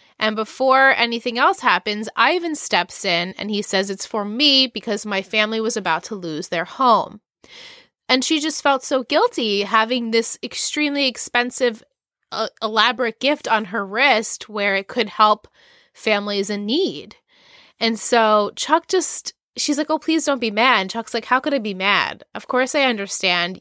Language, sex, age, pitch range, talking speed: English, female, 20-39, 195-260 Hz, 175 wpm